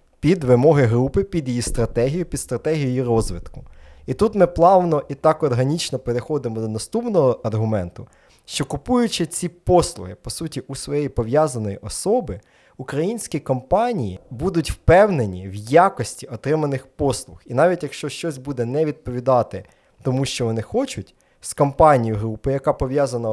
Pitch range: 120-155 Hz